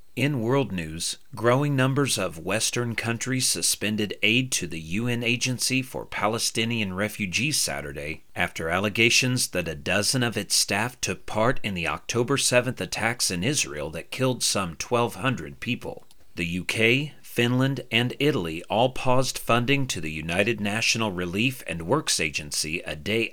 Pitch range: 85-125 Hz